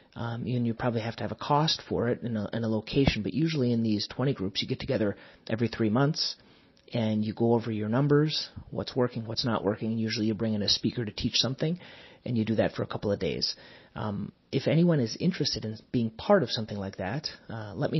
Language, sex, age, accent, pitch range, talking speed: English, male, 30-49, American, 110-125 Hz, 235 wpm